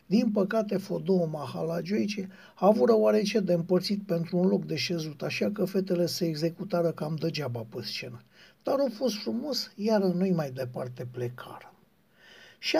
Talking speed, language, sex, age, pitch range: 165 wpm, Romanian, male, 60-79, 165-205 Hz